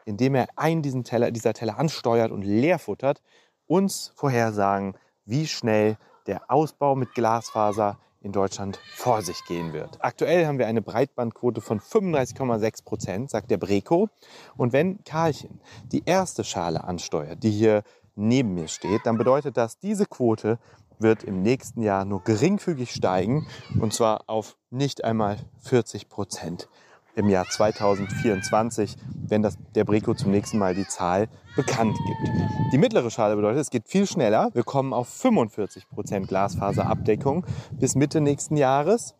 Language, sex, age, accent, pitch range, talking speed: German, male, 30-49, German, 105-130 Hz, 145 wpm